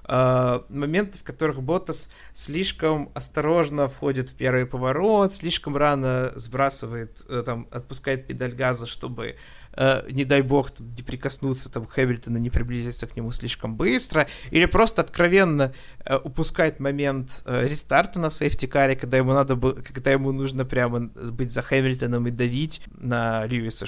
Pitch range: 120-145 Hz